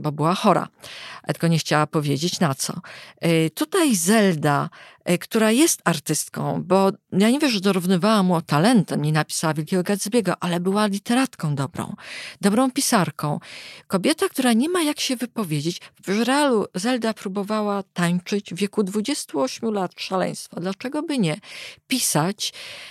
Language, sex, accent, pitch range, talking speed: Polish, female, native, 165-225 Hz, 140 wpm